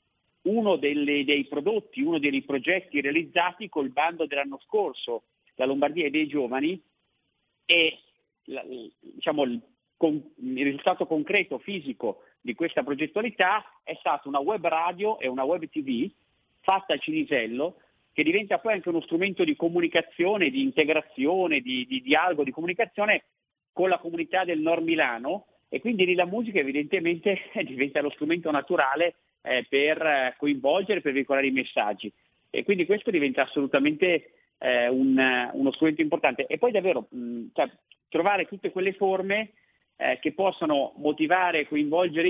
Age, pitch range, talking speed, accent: 50-69, 140-200 Hz, 150 wpm, native